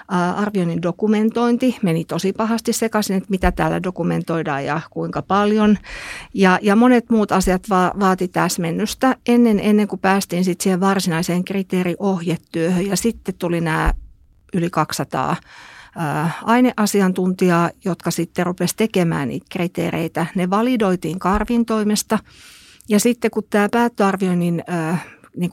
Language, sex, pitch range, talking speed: Finnish, female, 170-210 Hz, 125 wpm